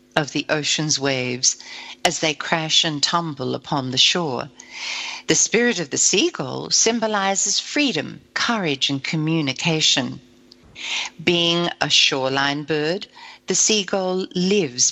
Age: 60-79